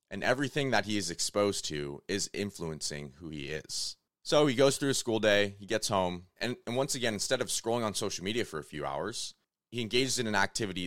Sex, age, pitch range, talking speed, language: male, 30-49, 85-115 Hz, 225 wpm, English